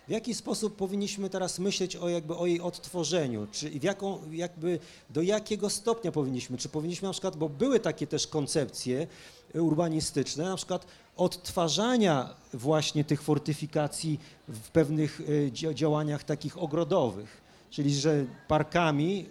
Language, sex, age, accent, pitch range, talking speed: Polish, male, 40-59, native, 145-175 Hz, 135 wpm